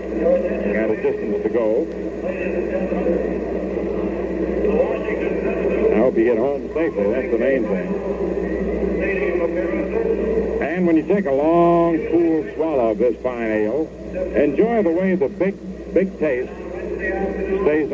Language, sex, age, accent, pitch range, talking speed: English, male, 60-79, American, 155-200 Hz, 115 wpm